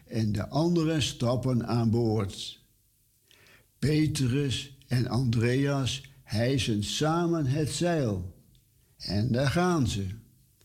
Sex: male